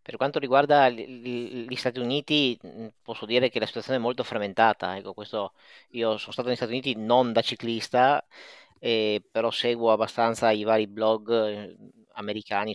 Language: Italian